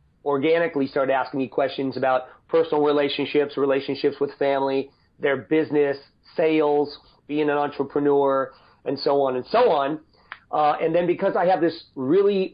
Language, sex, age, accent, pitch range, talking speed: English, male, 40-59, American, 130-150 Hz, 150 wpm